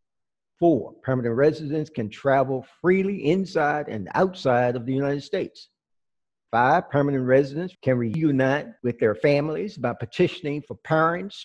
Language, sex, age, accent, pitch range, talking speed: English, male, 60-79, American, 125-165 Hz, 130 wpm